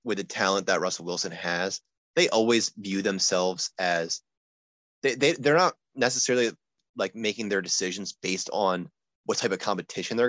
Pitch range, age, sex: 95-140 Hz, 20-39, male